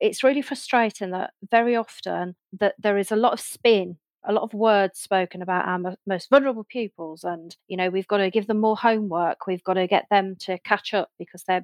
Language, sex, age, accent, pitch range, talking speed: English, female, 40-59, British, 185-230 Hz, 220 wpm